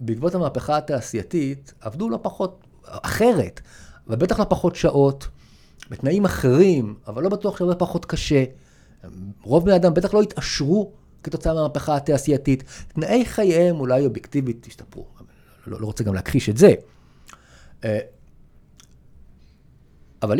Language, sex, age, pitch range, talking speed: Hebrew, male, 50-69, 105-165 Hz, 120 wpm